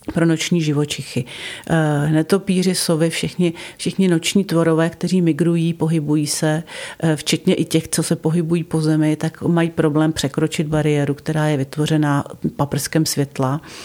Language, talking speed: Czech, 145 wpm